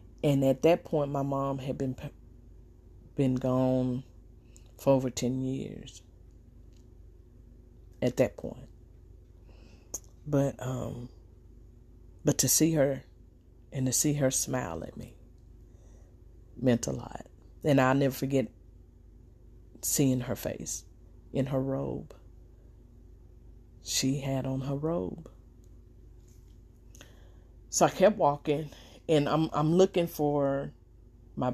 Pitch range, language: 95-135 Hz, English